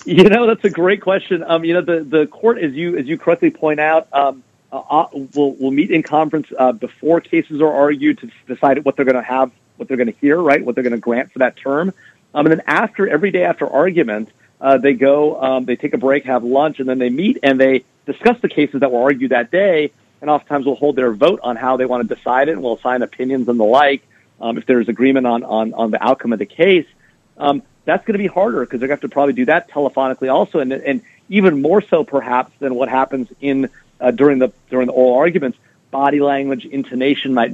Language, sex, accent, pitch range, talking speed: English, male, American, 125-155 Hz, 245 wpm